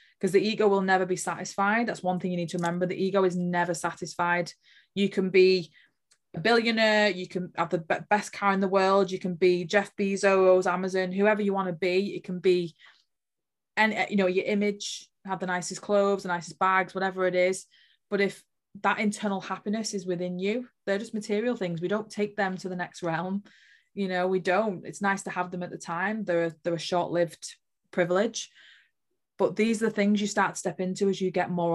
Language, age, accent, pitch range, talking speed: English, 20-39, British, 180-200 Hz, 210 wpm